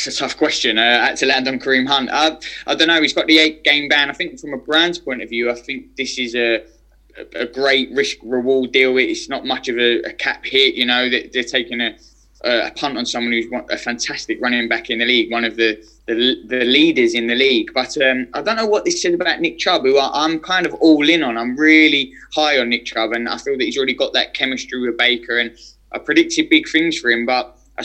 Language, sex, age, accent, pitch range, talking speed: English, male, 20-39, British, 115-140 Hz, 255 wpm